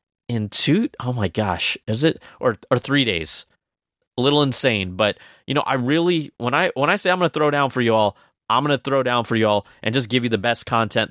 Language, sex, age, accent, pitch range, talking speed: English, male, 20-39, American, 115-150 Hz, 240 wpm